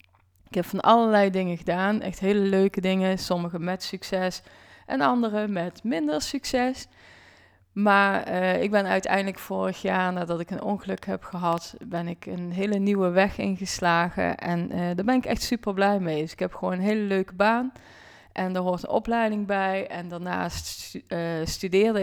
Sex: female